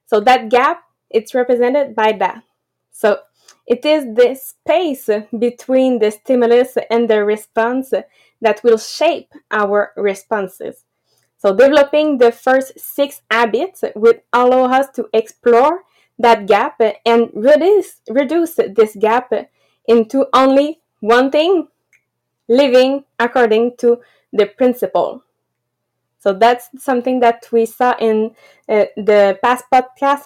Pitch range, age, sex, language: 220-265 Hz, 20-39, female, English